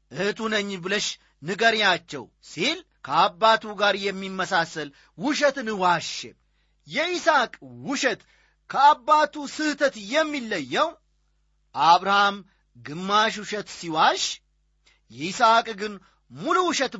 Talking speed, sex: 80 wpm, male